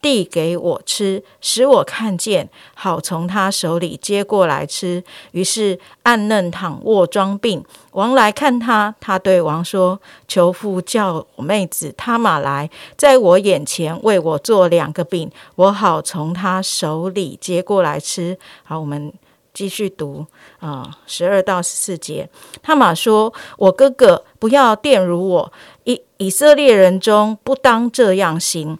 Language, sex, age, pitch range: Chinese, female, 50-69, 175-220 Hz